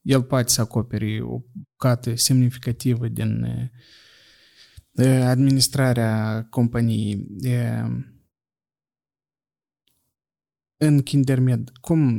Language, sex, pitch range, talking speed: Romanian, male, 115-135 Hz, 65 wpm